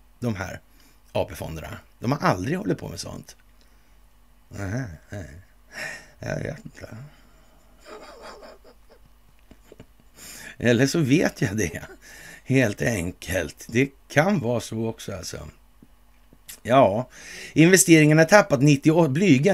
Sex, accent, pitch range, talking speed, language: male, native, 110-145 Hz, 90 wpm, Swedish